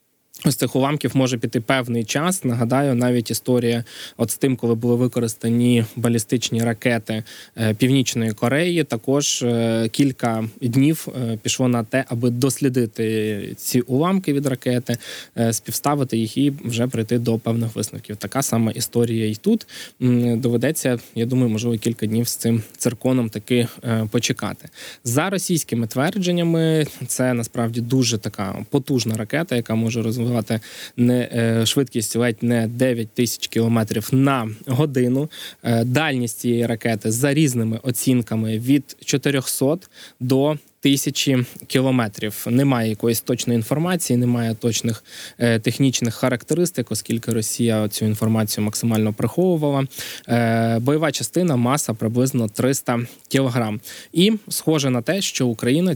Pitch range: 115-135 Hz